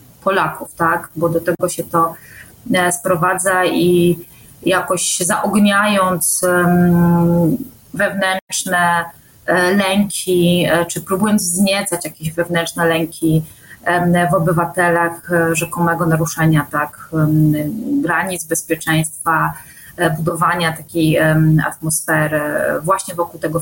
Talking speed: 80 wpm